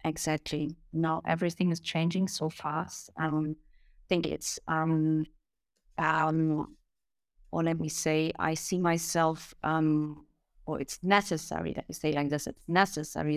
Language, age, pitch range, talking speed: English, 30-49, 155-175 Hz, 150 wpm